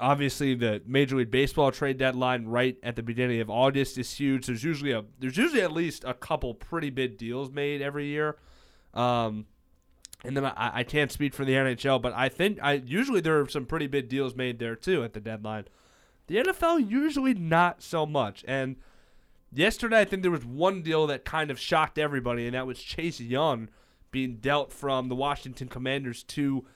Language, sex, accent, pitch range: English, male, American, 125-155 Hz